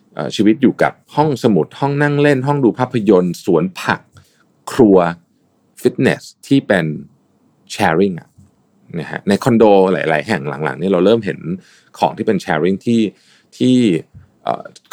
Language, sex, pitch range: Thai, male, 90-130 Hz